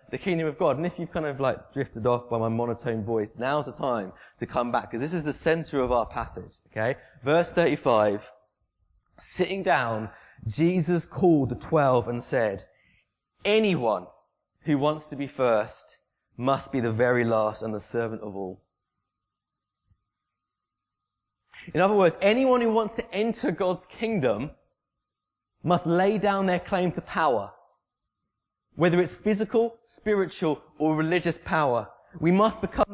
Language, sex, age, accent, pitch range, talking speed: English, male, 20-39, British, 110-170 Hz, 155 wpm